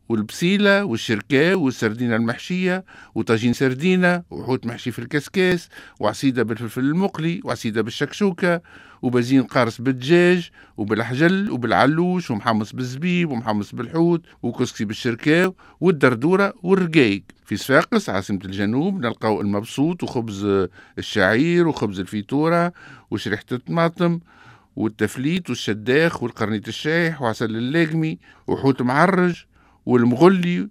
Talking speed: 95 wpm